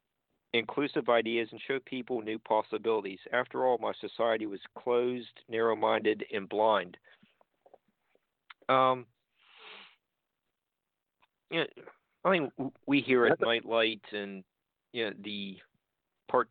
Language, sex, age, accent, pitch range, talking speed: English, male, 50-69, American, 105-120 Hz, 115 wpm